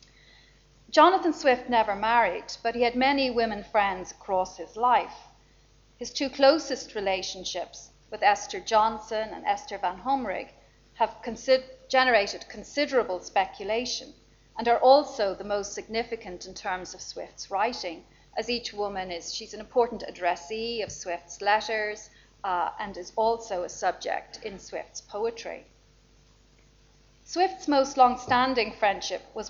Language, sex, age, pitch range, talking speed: English, female, 40-59, 195-245 Hz, 130 wpm